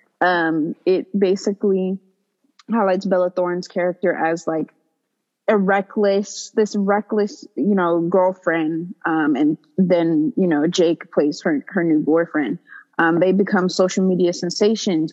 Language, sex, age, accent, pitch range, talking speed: English, female, 20-39, American, 175-210 Hz, 130 wpm